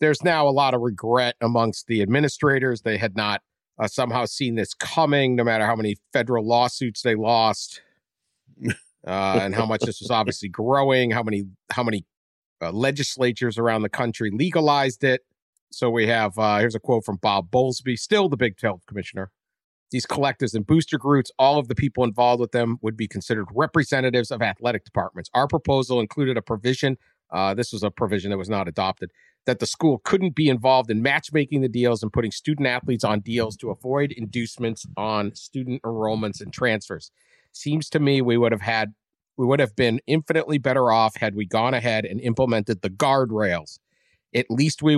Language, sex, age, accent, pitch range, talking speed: English, male, 50-69, American, 110-135 Hz, 190 wpm